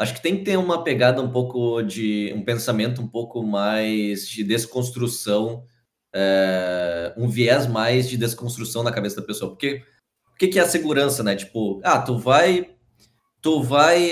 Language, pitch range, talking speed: Portuguese, 110-140 Hz, 160 wpm